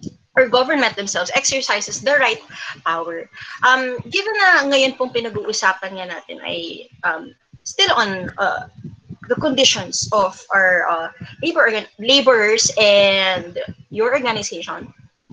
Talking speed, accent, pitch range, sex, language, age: 115 wpm, native, 195-275 Hz, female, Filipino, 20-39